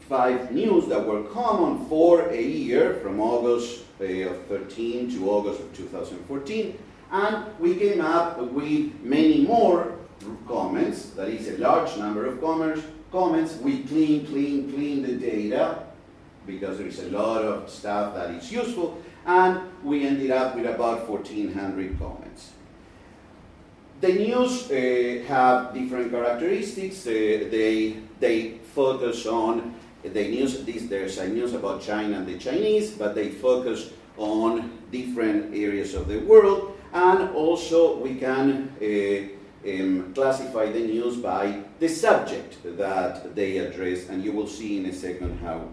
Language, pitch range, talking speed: English, 105-160 Hz, 145 wpm